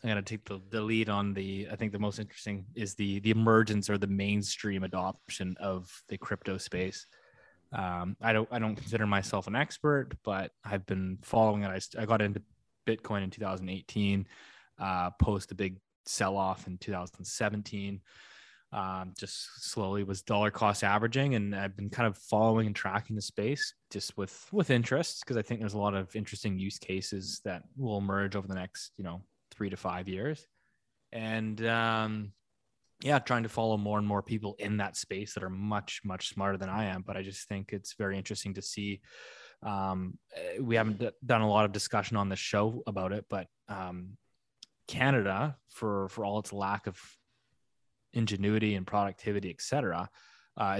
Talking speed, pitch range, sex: 180 wpm, 95-110 Hz, male